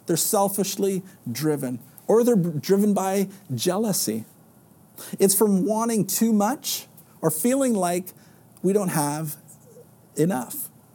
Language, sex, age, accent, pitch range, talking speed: English, male, 50-69, American, 160-215 Hz, 110 wpm